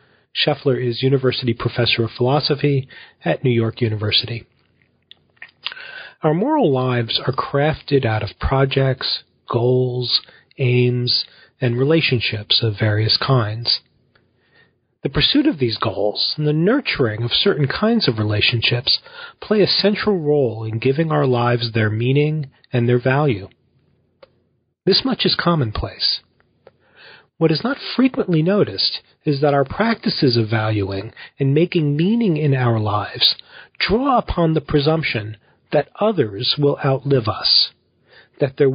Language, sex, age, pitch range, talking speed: English, male, 40-59, 115-150 Hz, 130 wpm